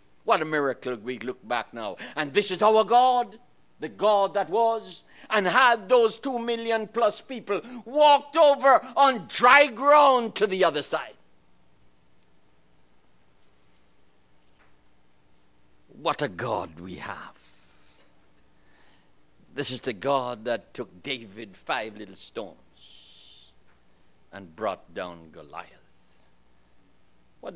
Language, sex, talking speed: English, male, 115 wpm